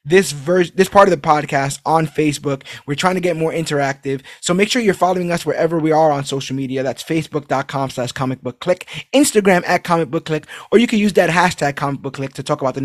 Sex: male